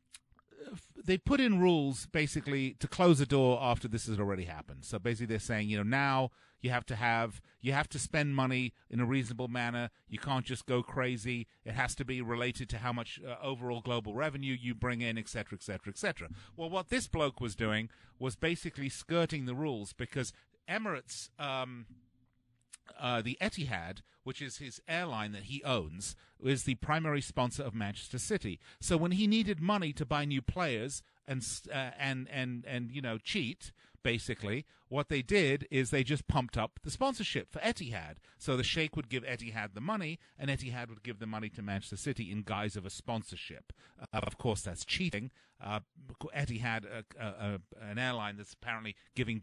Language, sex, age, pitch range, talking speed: English, male, 40-59, 110-140 Hz, 195 wpm